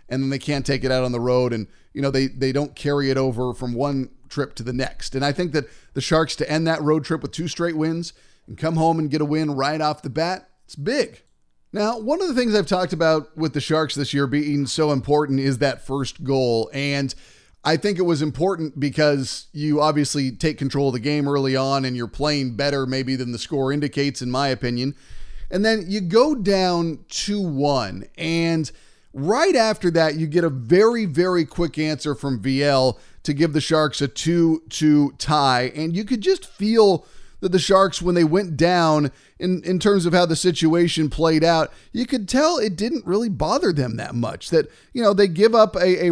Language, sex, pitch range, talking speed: English, male, 140-185 Hz, 220 wpm